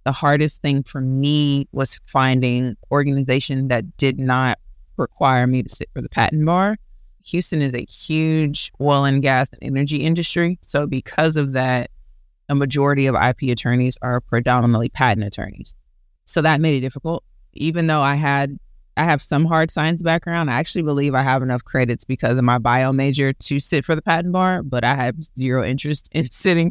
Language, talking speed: English, 185 wpm